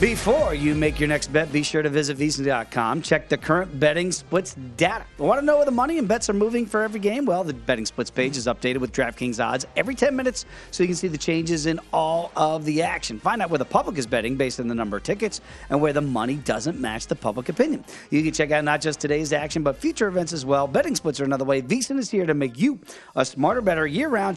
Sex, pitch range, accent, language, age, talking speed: male, 135-190 Hz, American, English, 40-59, 255 wpm